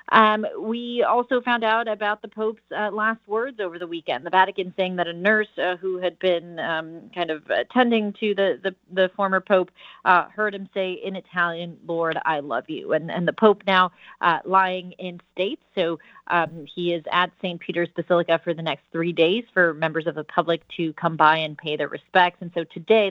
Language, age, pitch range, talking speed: English, 30-49, 160-185 Hz, 210 wpm